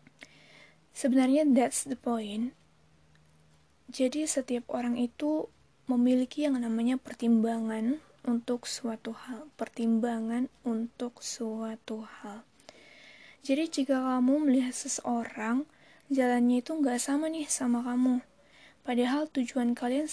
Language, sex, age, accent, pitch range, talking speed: Indonesian, female, 20-39, native, 230-265 Hz, 100 wpm